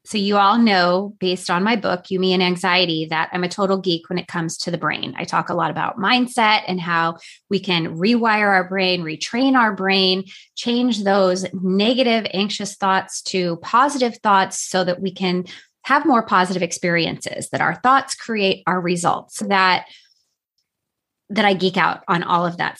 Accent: American